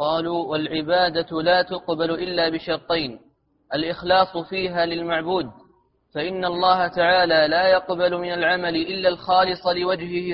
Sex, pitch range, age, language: male, 160-180 Hz, 30-49, Arabic